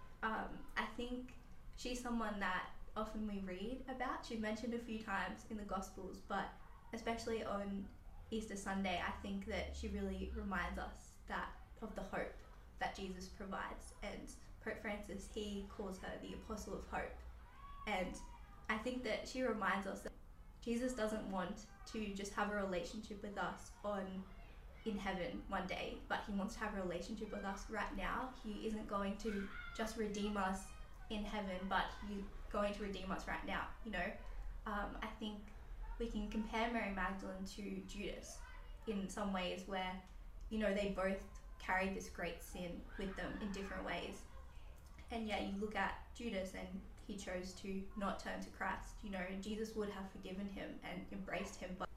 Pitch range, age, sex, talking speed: 190-220 Hz, 10-29, female, 175 wpm